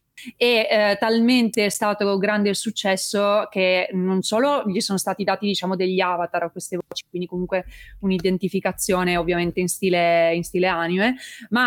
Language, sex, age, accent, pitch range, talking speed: Italian, female, 20-39, native, 180-205 Hz, 160 wpm